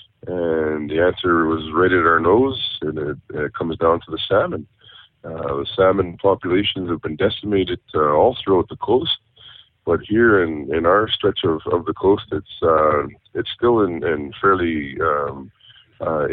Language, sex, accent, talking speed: English, male, American, 175 wpm